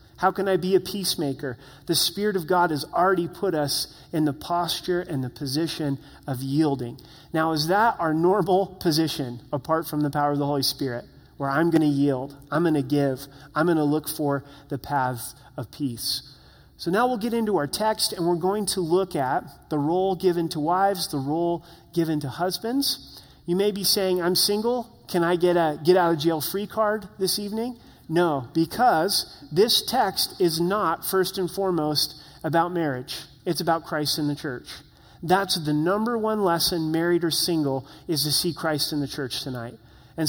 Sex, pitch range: male, 145-185 Hz